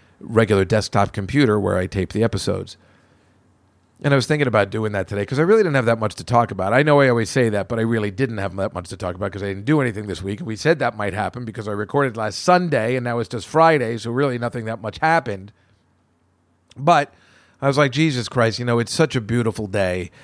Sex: male